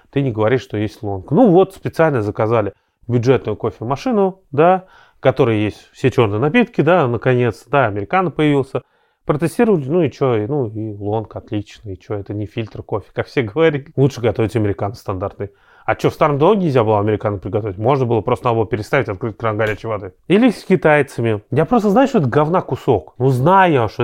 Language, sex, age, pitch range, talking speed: Russian, male, 30-49, 110-160 Hz, 185 wpm